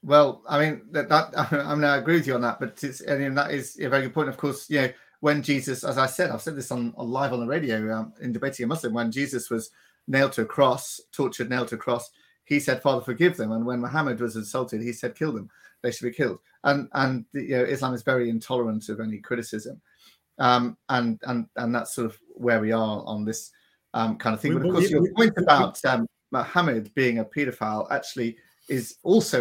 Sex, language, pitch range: male, English, 110-135 Hz